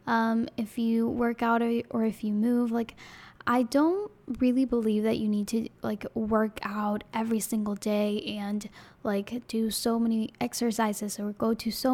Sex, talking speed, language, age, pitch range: female, 175 wpm, English, 10-29, 220-260 Hz